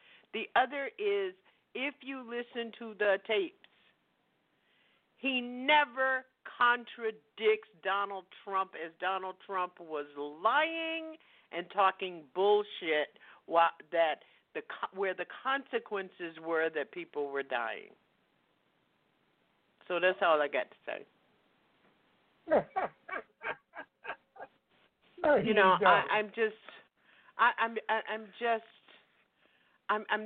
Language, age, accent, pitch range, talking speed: English, 50-69, American, 175-265 Hz, 100 wpm